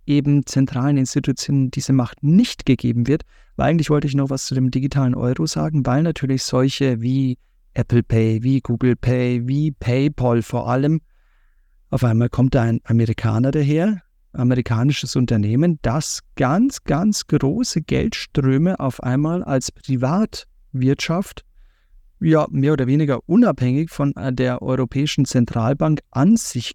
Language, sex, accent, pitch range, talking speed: German, male, German, 125-155 Hz, 135 wpm